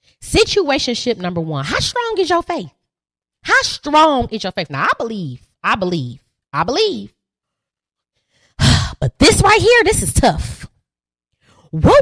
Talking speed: 140 wpm